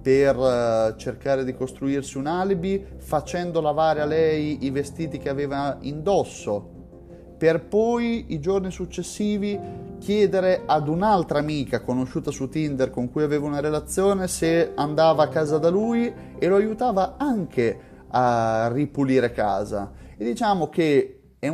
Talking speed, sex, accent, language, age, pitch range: 135 wpm, male, native, Italian, 30-49, 105-150 Hz